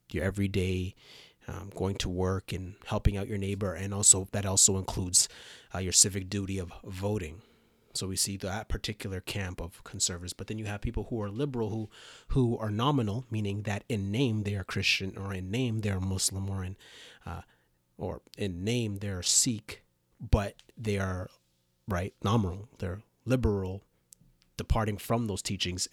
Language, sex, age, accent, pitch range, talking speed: English, male, 30-49, American, 95-110 Hz, 175 wpm